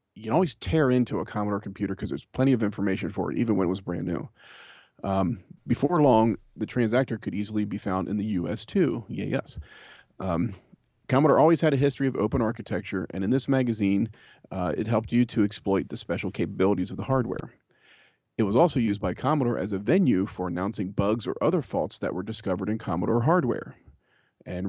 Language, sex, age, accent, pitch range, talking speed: English, male, 40-59, American, 95-125 Hz, 200 wpm